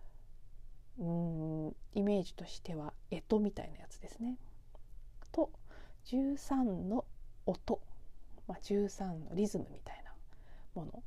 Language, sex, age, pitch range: Japanese, female, 40-59, 155-215 Hz